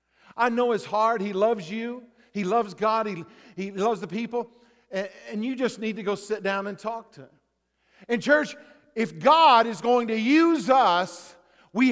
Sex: male